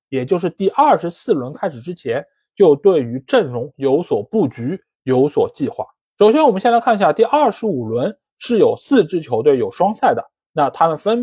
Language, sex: Chinese, male